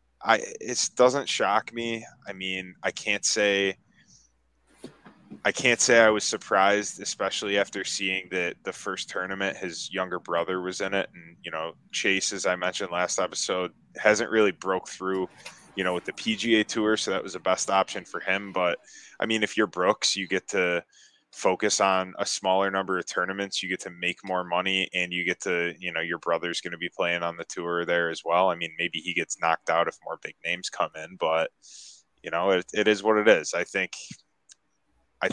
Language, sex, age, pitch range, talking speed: English, male, 10-29, 85-100 Hz, 205 wpm